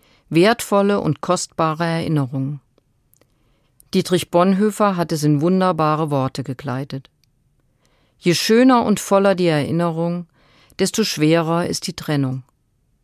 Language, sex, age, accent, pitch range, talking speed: German, female, 50-69, German, 140-190 Hz, 105 wpm